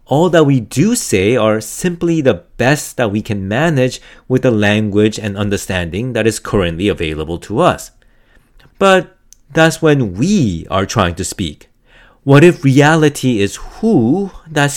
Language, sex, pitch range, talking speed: English, male, 105-155 Hz, 155 wpm